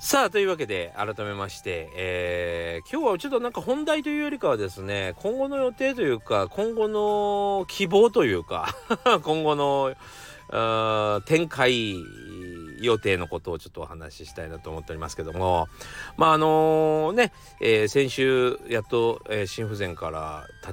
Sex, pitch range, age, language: male, 90-135 Hz, 40-59, Japanese